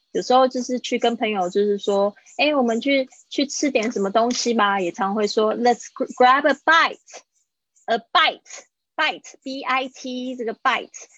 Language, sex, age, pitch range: Chinese, female, 20-39, 205-255 Hz